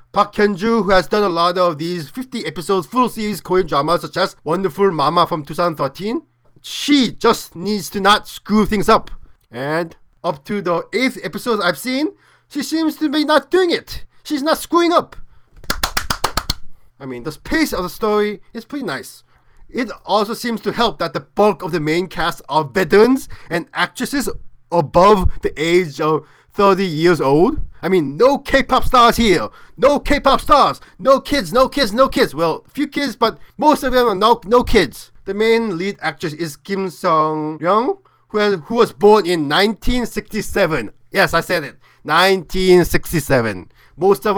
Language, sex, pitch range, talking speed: English, male, 170-235 Hz, 175 wpm